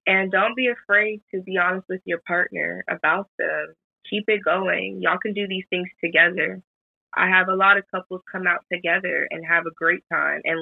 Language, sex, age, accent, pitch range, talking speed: English, female, 20-39, American, 175-215 Hz, 205 wpm